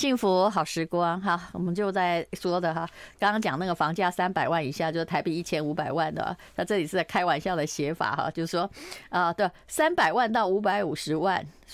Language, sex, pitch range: Chinese, female, 175-250 Hz